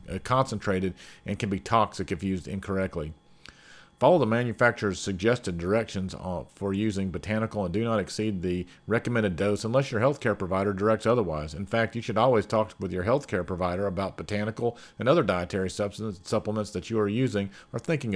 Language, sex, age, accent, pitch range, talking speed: English, male, 40-59, American, 95-115 Hz, 170 wpm